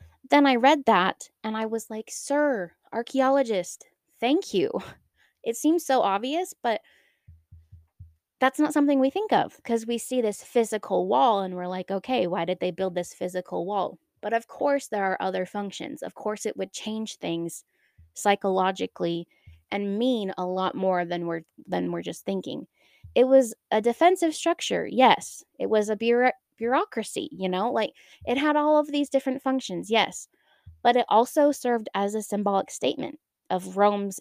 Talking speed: 170 wpm